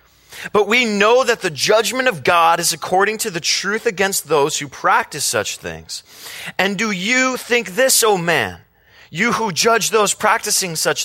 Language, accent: English, American